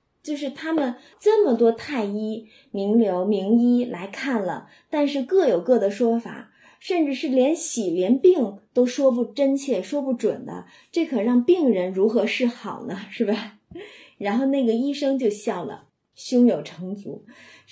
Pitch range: 210-260 Hz